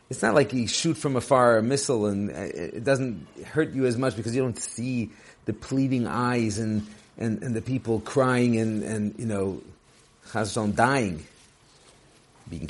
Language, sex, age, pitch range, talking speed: English, male, 50-69, 110-160 Hz, 165 wpm